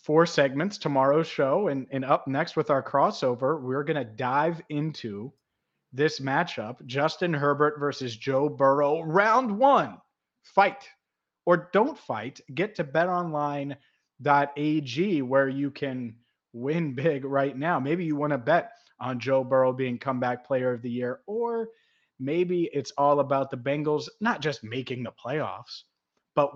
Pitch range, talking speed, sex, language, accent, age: 125-150 Hz, 150 wpm, male, English, American, 30-49